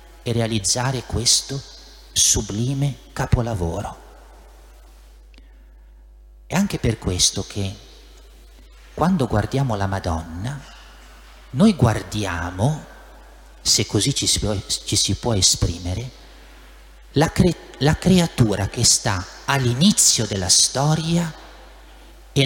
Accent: native